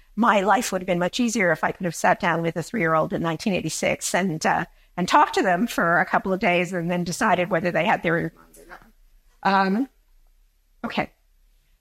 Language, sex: English, female